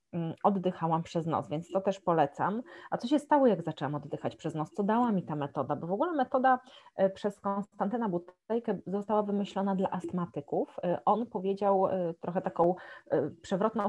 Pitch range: 175-215 Hz